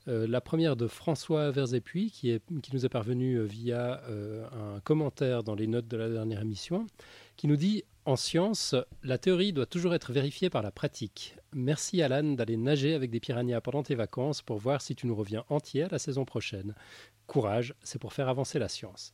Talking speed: 210 wpm